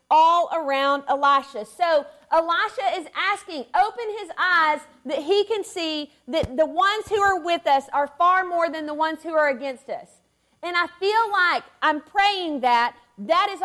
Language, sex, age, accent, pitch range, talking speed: English, female, 40-59, American, 280-375 Hz, 175 wpm